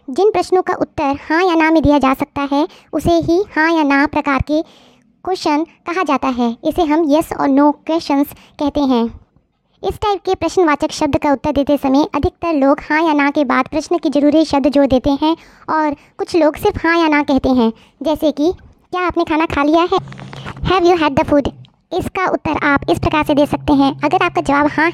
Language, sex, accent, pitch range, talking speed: Hindi, male, native, 280-335 Hz, 210 wpm